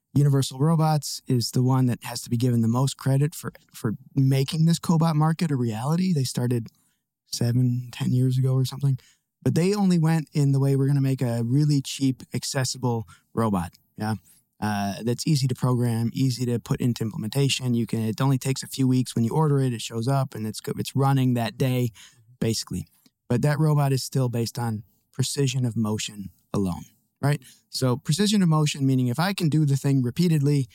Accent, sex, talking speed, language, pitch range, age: American, male, 200 wpm, German, 120-145 Hz, 20-39